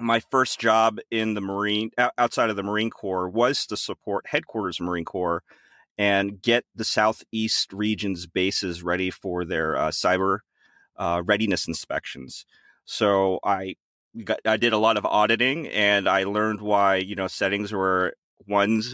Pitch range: 95-115 Hz